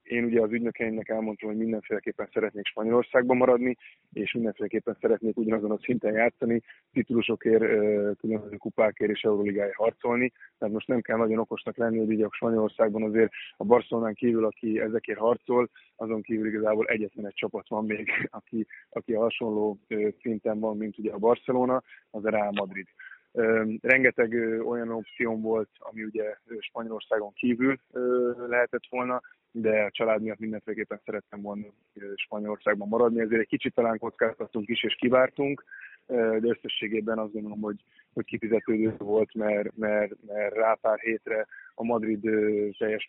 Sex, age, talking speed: male, 20-39, 150 wpm